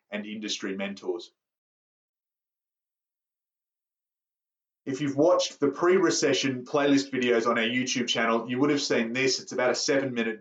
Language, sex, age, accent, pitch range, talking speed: English, male, 30-49, Australian, 115-145 Hz, 135 wpm